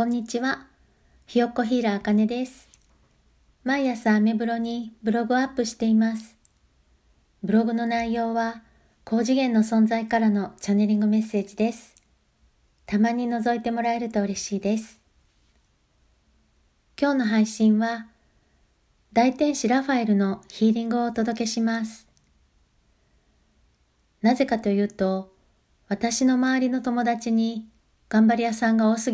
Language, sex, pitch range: Japanese, female, 205-235 Hz